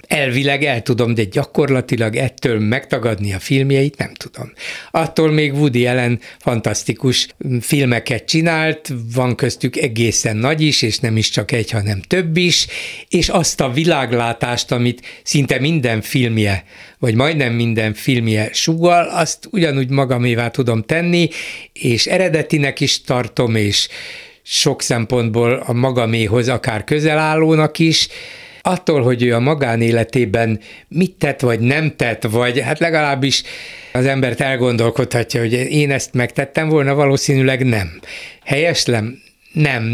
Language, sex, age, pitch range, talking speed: Hungarian, male, 60-79, 115-150 Hz, 130 wpm